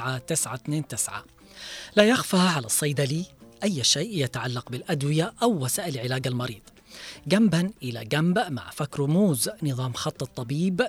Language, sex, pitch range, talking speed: Arabic, female, 140-185 Hz, 120 wpm